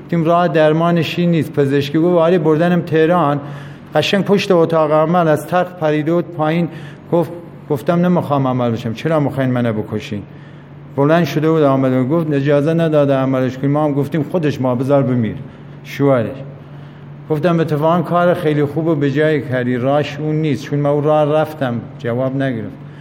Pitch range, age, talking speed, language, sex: 140-165 Hz, 50-69, 160 wpm, Persian, male